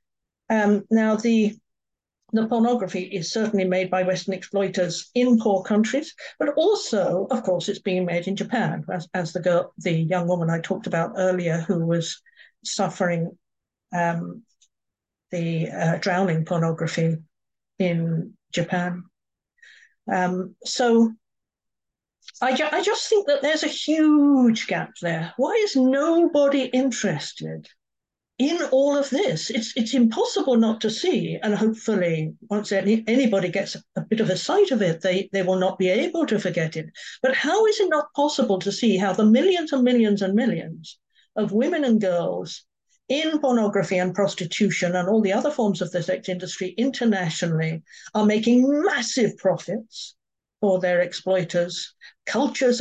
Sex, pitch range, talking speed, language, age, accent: female, 180-245 Hz, 150 wpm, English, 50-69, British